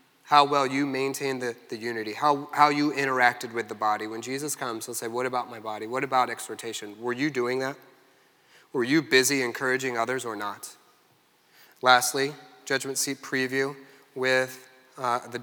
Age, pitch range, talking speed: 30-49, 125-160 Hz, 170 wpm